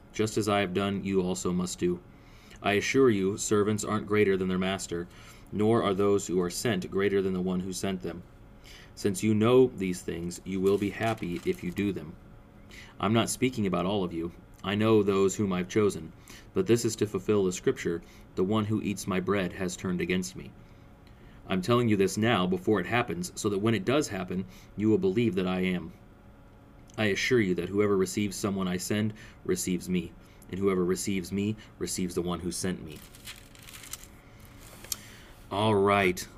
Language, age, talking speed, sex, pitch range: English, 30-49, 195 wpm, male, 95-115 Hz